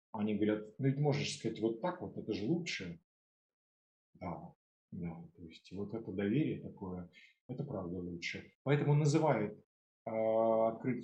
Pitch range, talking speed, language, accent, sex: 105-140 Hz, 135 wpm, Russian, native, male